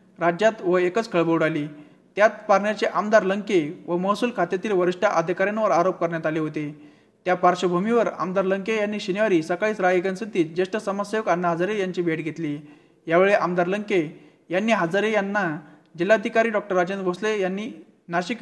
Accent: native